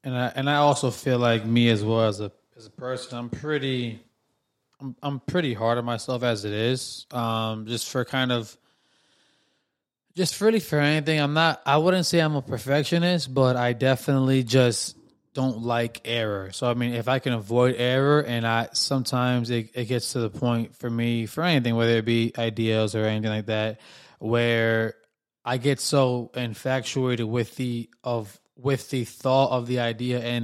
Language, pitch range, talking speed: English, 115-135 Hz, 185 wpm